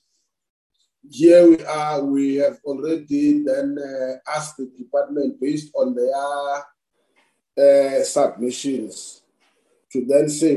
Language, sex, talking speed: English, male, 110 wpm